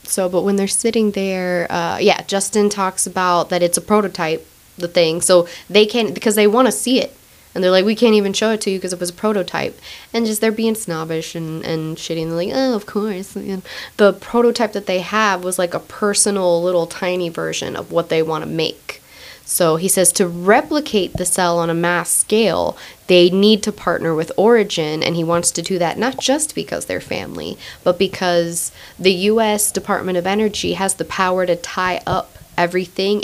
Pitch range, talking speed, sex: 165-200 Hz, 210 wpm, female